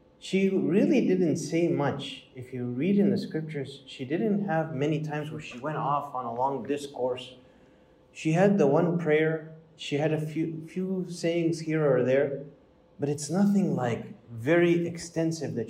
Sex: male